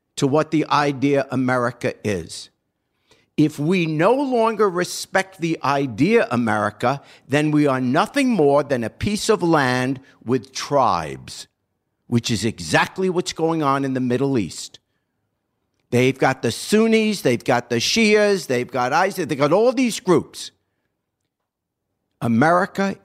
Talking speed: 140 wpm